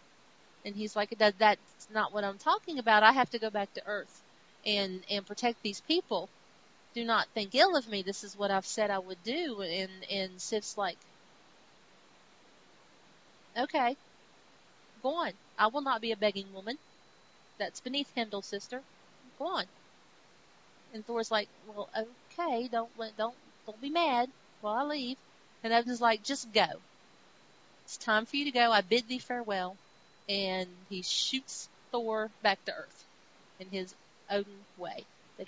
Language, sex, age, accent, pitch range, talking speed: English, female, 40-59, American, 200-235 Hz, 160 wpm